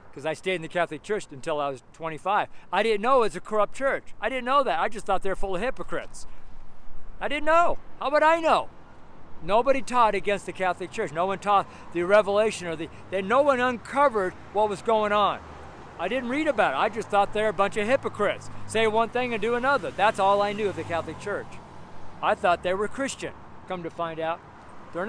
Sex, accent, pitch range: male, American, 155-220 Hz